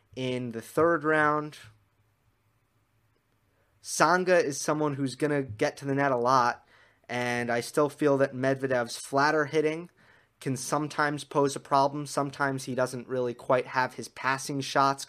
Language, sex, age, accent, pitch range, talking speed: English, male, 30-49, American, 120-145 Hz, 150 wpm